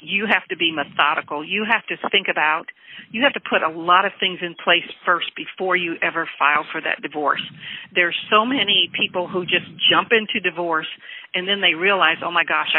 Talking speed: 205 wpm